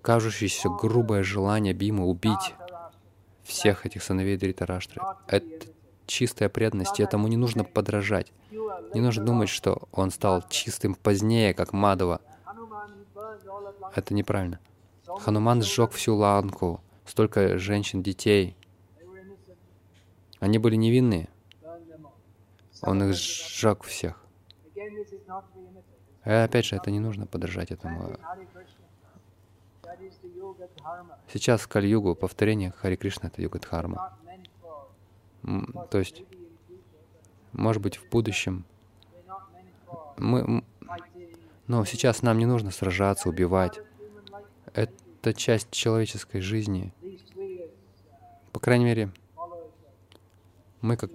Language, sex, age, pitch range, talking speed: Russian, male, 20-39, 95-115 Hz, 95 wpm